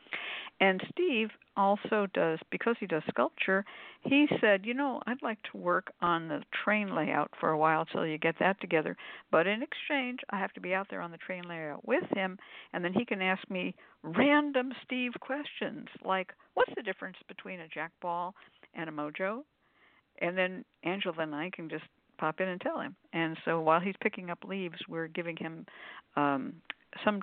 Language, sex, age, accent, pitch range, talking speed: English, female, 60-79, American, 160-220 Hz, 190 wpm